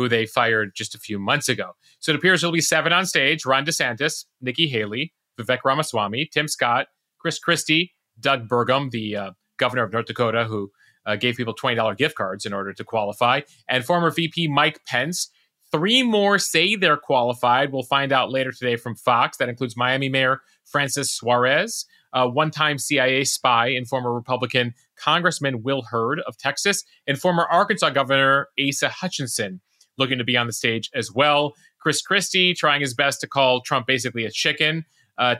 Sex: male